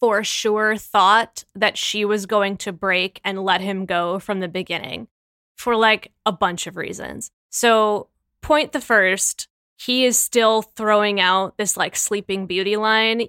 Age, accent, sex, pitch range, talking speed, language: 10-29, American, female, 195-230 Hz, 165 wpm, English